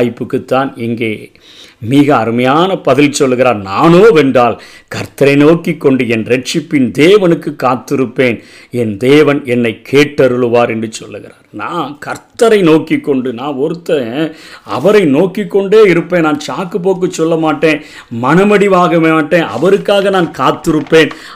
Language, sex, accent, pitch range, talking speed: Tamil, male, native, 130-175 Hz, 80 wpm